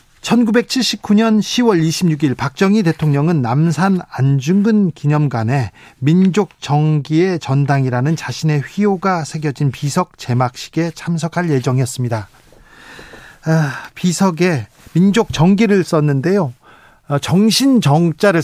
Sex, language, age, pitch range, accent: male, Korean, 40-59, 135-170 Hz, native